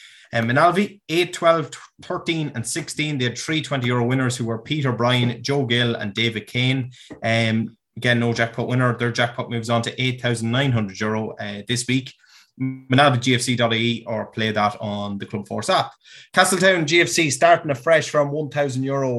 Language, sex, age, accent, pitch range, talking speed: English, male, 20-39, Irish, 115-140 Hz, 170 wpm